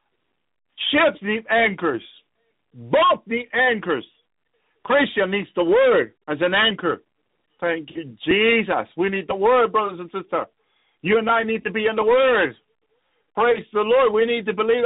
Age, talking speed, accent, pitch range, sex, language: 50-69, 160 wpm, American, 185-285 Hz, male, English